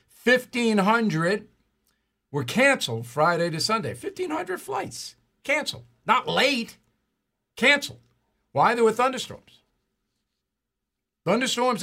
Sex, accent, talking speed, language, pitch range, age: male, American, 85 wpm, English, 155-235 Hz, 60-79